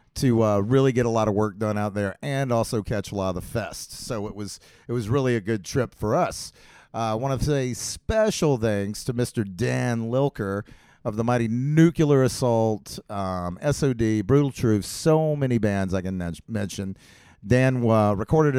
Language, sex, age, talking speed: English, male, 50-69, 195 wpm